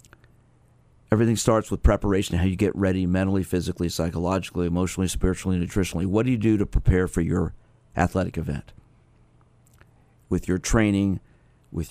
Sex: male